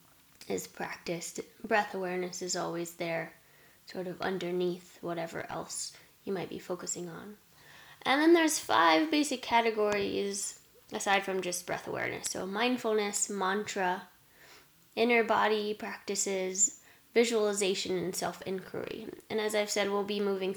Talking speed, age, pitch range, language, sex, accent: 130 wpm, 10-29, 180-220 Hz, English, female, American